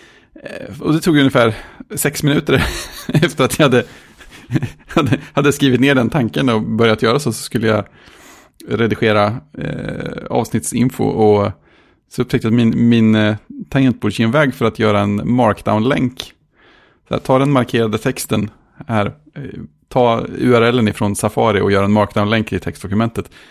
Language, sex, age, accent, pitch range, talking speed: Swedish, male, 30-49, Norwegian, 110-140 Hz, 150 wpm